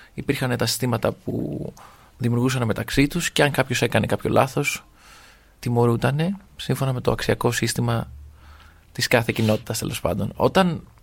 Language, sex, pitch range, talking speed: Greek, male, 125-160 Hz, 125 wpm